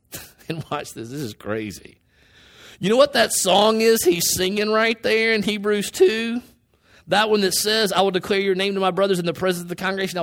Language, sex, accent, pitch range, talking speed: English, male, American, 145-210 Hz, 210 wpm